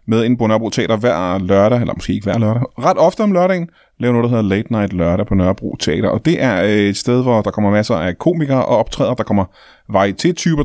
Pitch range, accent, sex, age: 105-145 Hz, native, male, 20-39